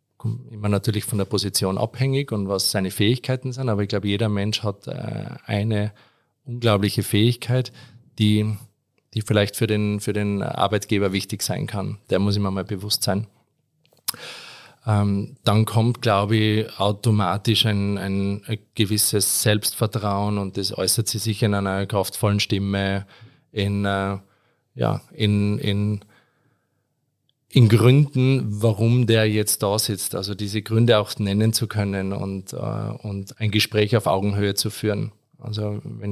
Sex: male